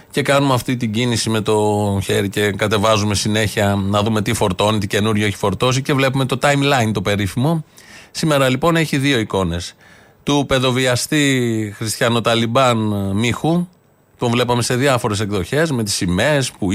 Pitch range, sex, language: 110-145 Hz, male, Greek